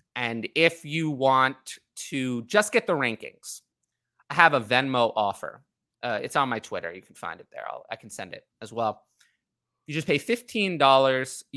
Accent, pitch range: American, 115-140 Hz